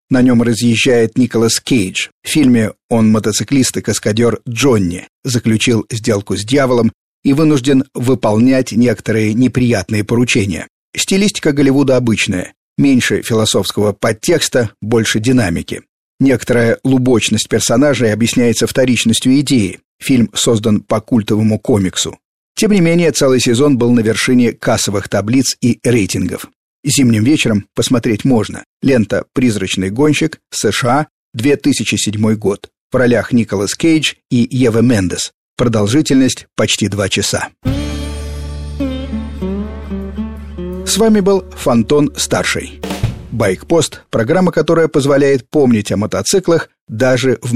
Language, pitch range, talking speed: Russian, 105-130 Hz, 110 wpm